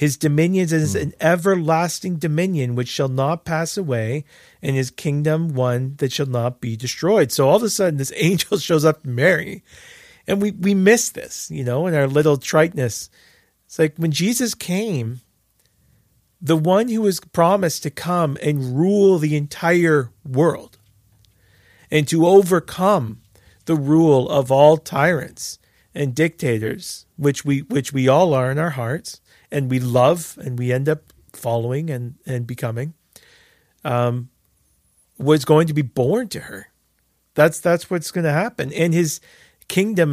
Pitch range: 130-170 Hz